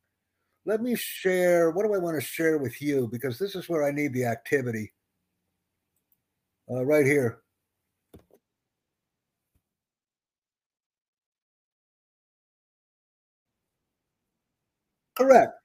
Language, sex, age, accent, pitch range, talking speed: English, male, 60-79, American, 105-165 Hz, 90 wpm